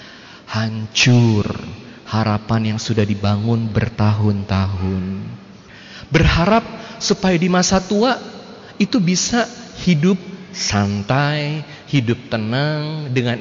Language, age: Indonesian, 30-49